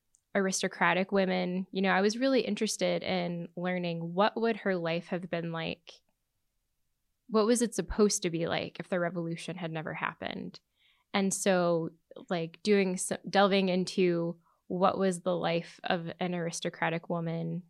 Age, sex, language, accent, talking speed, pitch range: 10-29, female, English, American, 155 wpm, 175-205 Hz